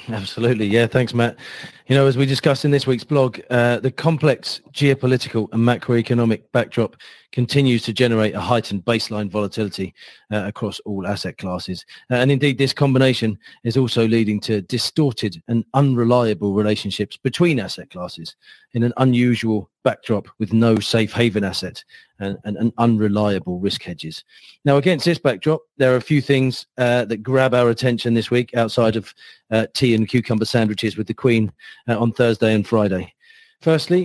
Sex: male